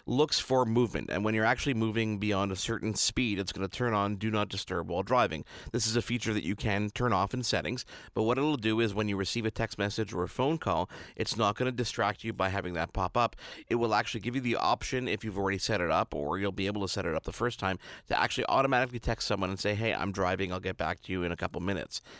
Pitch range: 100-120 Hz